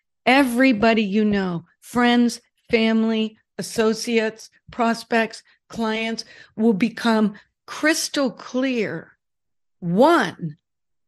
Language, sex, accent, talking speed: English, female, American, 70 wpm